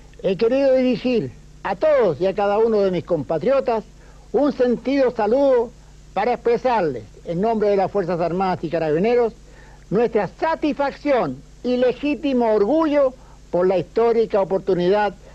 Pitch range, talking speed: 165-240 Hz, 135 wpm